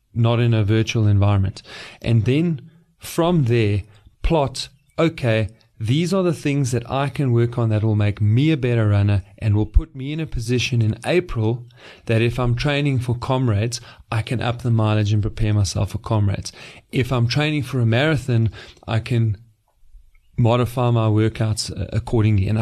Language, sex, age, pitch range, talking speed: English, male, 30-49, 110-130 Hz, 170 wpm